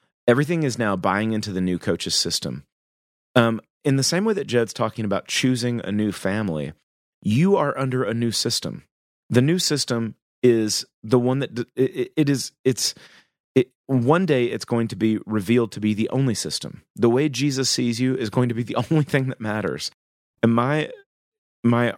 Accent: American